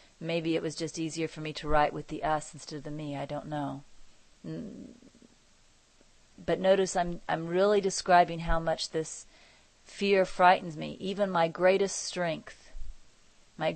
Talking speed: 155 wpm